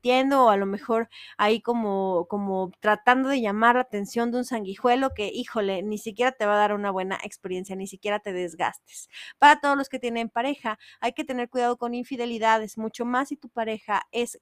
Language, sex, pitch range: Spanish, female, 205-245 Hz